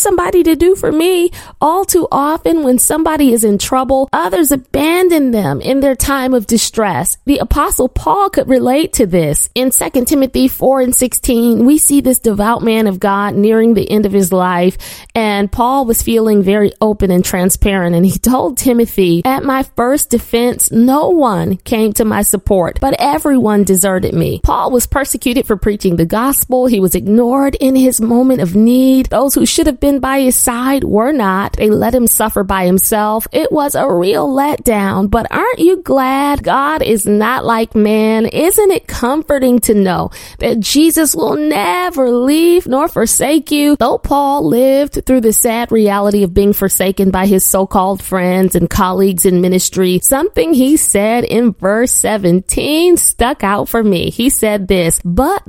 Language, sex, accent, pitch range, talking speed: English, female, American, 205-275 Hz, 175 wpm